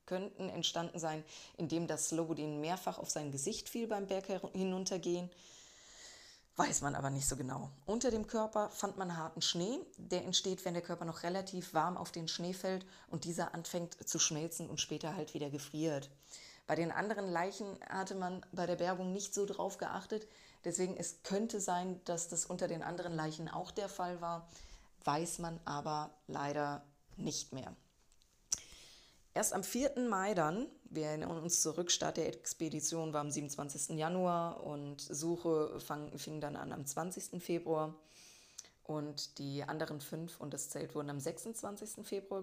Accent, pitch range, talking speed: German, 155-190 Hz, 165 wpm